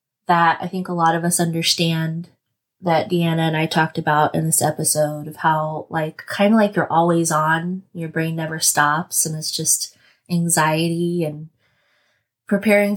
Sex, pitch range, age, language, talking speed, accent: female, 160-180 Hz, 20-39, English, 165 wpm, American